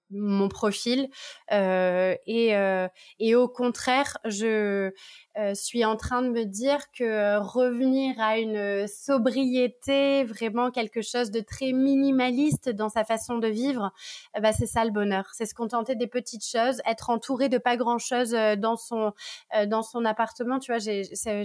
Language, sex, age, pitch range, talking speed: French, female, 20-39, 210-255 Hz, 170 wpm